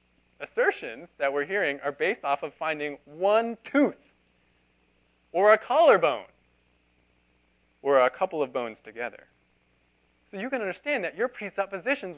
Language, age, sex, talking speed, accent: English, 20-39, male, 135 wpm, American